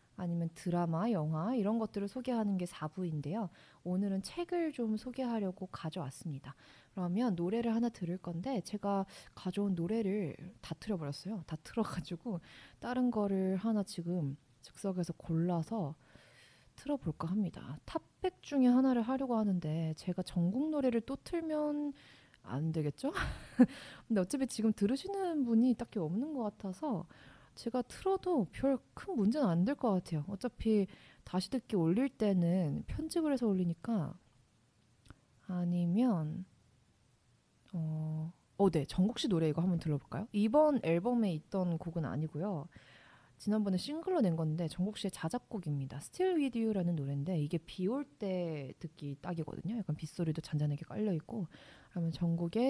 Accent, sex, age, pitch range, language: native, female, 20-39, 160-225 Hz, Korean